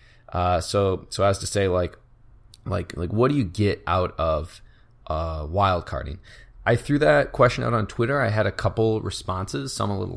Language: English